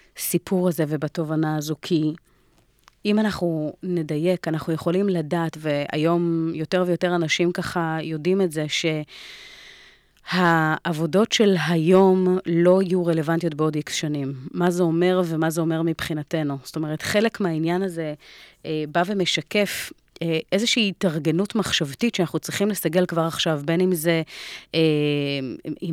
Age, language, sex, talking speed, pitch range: 30-49, Hebrew, female, 130 wpm, 155-185 Hz